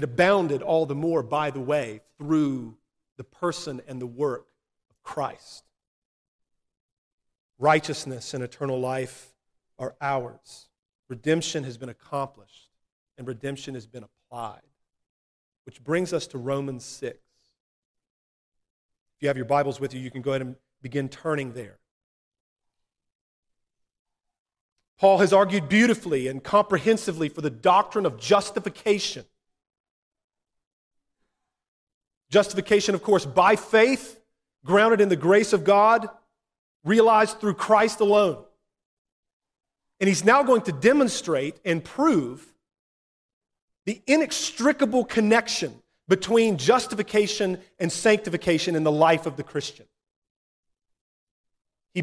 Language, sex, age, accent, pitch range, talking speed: English, male, 40-59, American, 140-215 Hz, 115 wpm